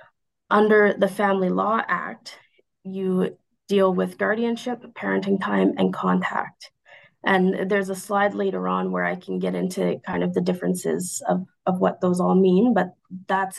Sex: female